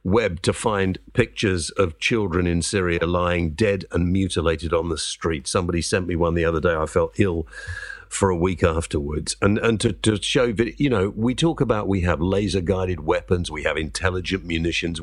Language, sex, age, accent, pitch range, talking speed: English, male, 50-69, British, 85-130 Hz, 195 wpm